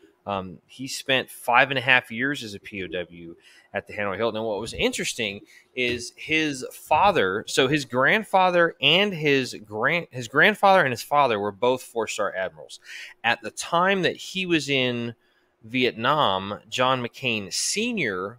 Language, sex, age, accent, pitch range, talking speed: English, male, 20-39, American, 105-140 Hz, 160 wpm